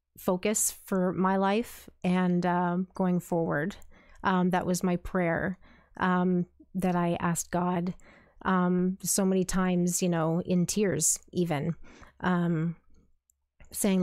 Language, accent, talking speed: English, American, 130 wpm